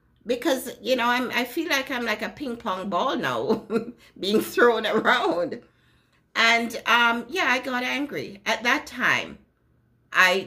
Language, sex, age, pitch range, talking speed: English, female, 60-79, 160-240 Hz, 155 wpm